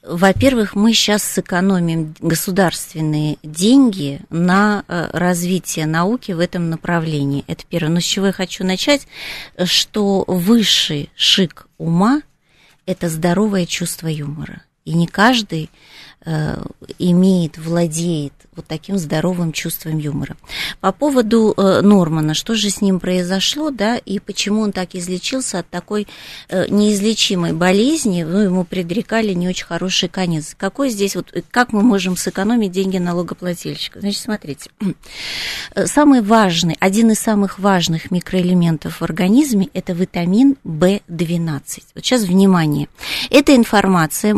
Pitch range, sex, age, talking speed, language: 170-205 Hz, female, 30-49, 125 wpm, Russian